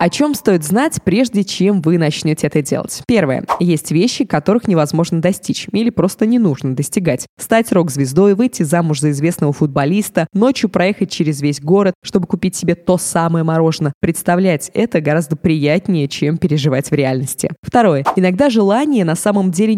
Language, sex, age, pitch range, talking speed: Russian, female, 20-39, 155-210 Hz, 160 wpm